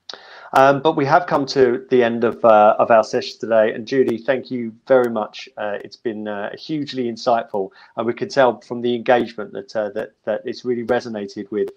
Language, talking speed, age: English, 210 wpm, 40-59